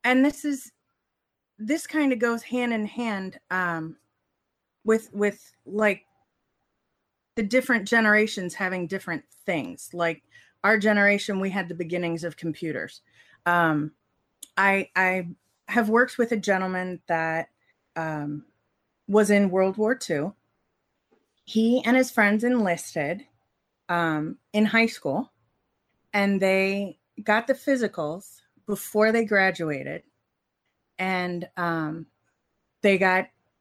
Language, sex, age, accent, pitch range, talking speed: English, female, 30-49, American, 180-235 Hz, 115 wpm